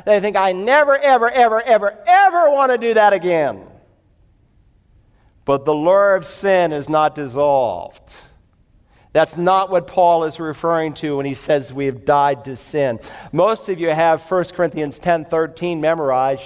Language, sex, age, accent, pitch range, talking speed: English, male, 50-69, American, 145-200 Hz, 165 wpm